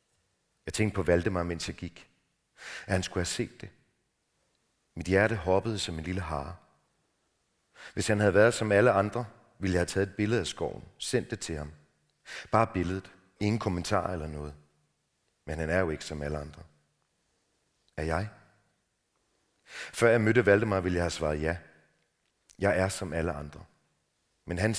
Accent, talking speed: native, 170 wpm